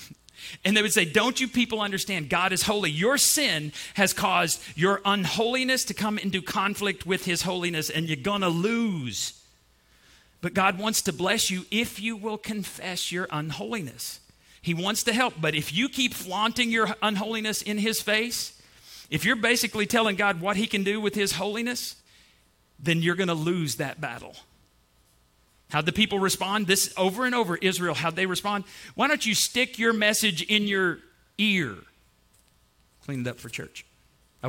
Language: English